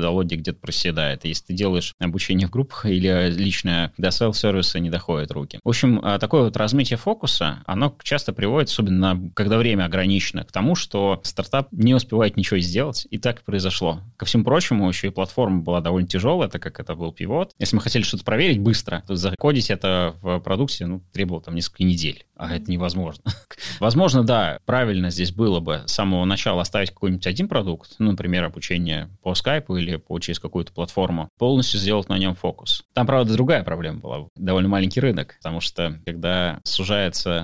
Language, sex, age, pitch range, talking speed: Russian, male, 20-39, 90-110 Hz, 180 wpm